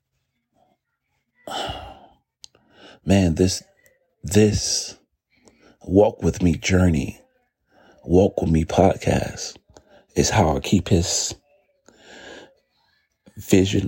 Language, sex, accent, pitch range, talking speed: English, male, American, 90-110 Hz, 75 wpm